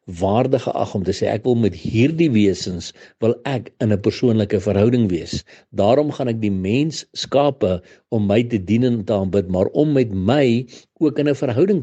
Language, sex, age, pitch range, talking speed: English, male, 60-79, 100-135 Hz, 185 wpm